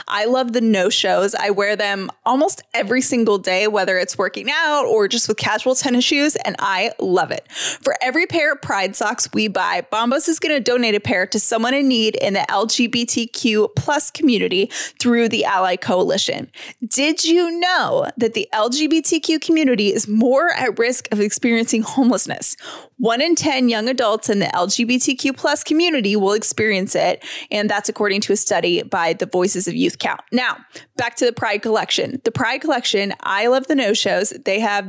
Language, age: English, 20-39